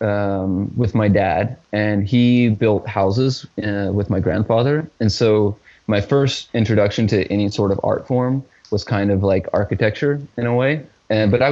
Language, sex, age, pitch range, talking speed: English, male, 20-39, 100-115 Hz, 175 wpm